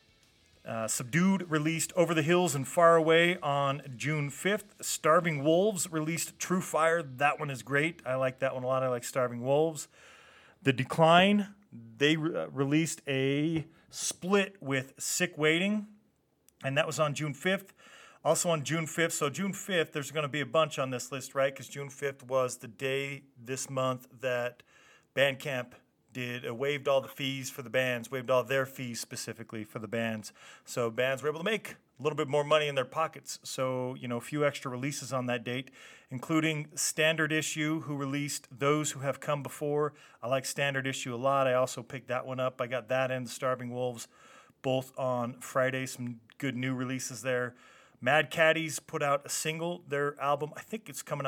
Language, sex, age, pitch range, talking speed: English, male, 40-59, 130-155 Hz, 190 wpm